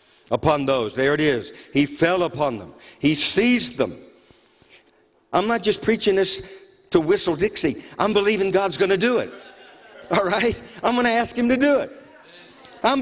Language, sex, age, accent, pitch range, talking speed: English, male, 50-69, American, 165-215 Hz, 165 wpm